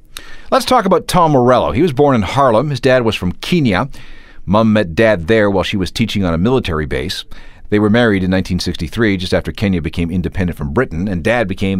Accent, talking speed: American, 215 wpm